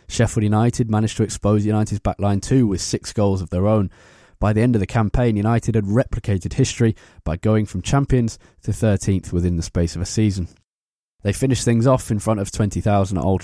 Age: 20-39